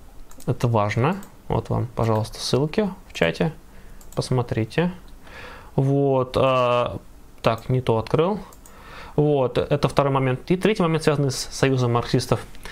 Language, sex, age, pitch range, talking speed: Russian, male, 20-39, 115-145 Hz, 125 wpm